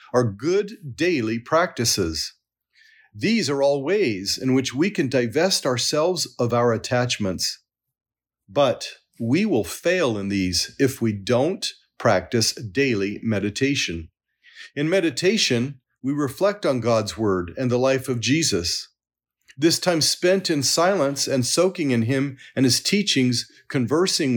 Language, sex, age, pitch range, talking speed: English, male, 40-59, 110-160 Hz, 135 wpm